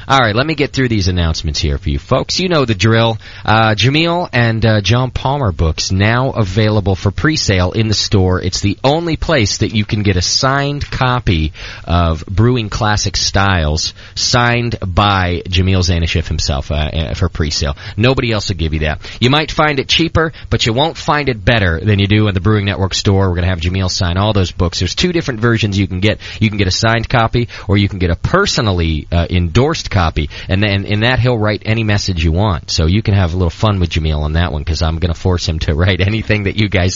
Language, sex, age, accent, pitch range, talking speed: English, male, 30-49, American, 90-115 Hz, 230 wpm